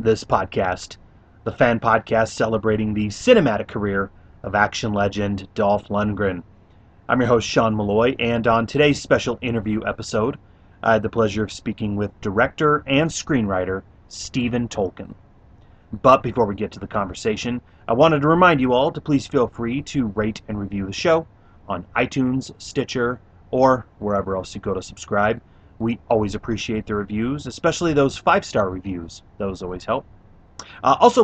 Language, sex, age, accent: English, male, 30-49, American